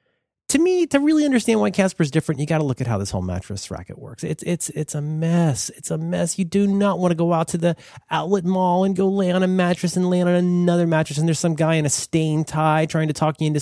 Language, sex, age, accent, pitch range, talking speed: English, male, 30-49, American, 120-190 Hz, 275 wpm